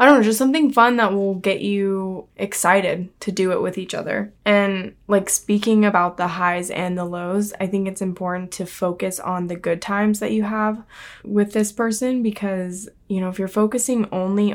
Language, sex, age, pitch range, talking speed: English, female, 10-29, 180-205 Hz, 200 wpm